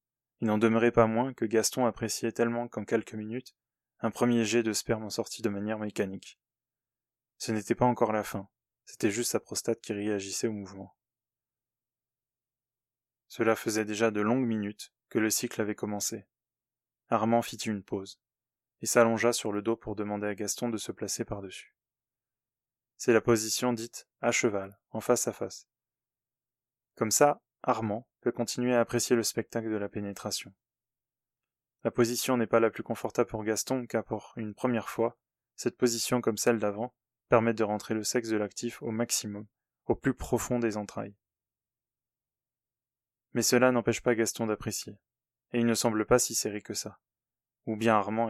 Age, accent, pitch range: 20-39, French, 110-125 Hz